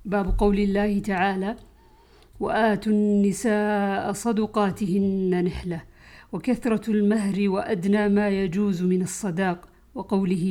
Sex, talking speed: female, 90 wpm